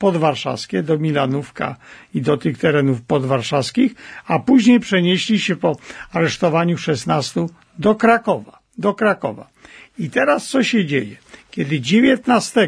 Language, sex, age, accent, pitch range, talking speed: Polish, male, 50-69, native, 145-205 Hz, 125 wpm